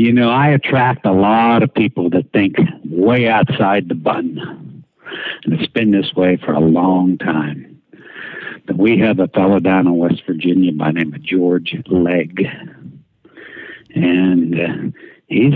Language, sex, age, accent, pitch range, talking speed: English, male, 60-79, American, 90-115 Hz, 160 wpm